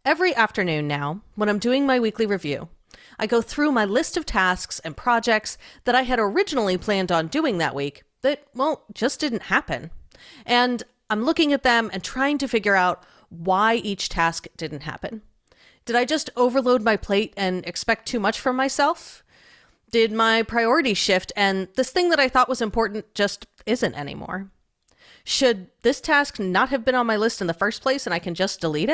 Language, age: English, 30-49